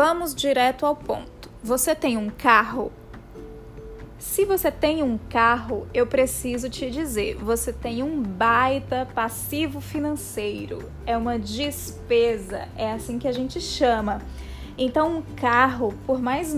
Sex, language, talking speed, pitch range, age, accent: female, Portuguese, 135 wpm, 230-295 Hz, 20-39, Brazilian